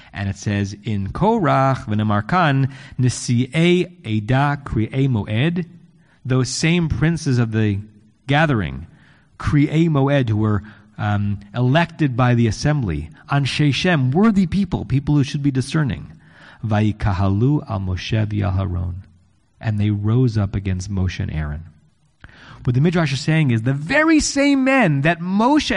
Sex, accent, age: male, American, 30-49